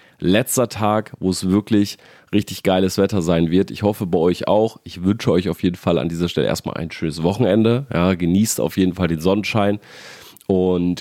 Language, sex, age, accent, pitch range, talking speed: German, male, 30-49, German, 90-105 Hz, 190 wpm